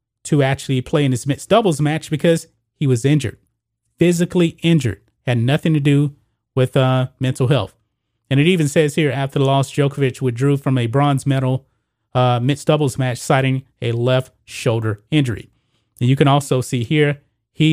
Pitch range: 120-150 Hz